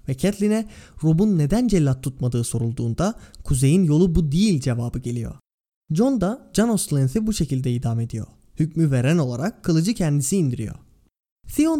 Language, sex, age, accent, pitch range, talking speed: Turkish, male, 20-39, native, 130-205 Hz, 140 wpm